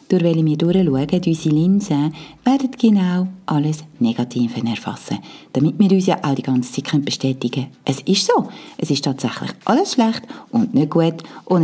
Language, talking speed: German, 175 wpm